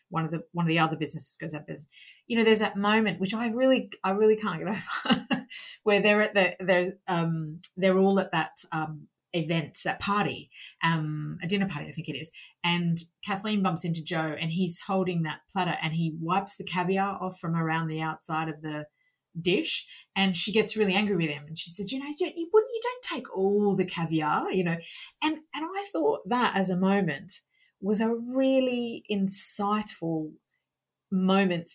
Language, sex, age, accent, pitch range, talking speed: English, female, 30-49, Australian, 165-235 Hz, 200 wpm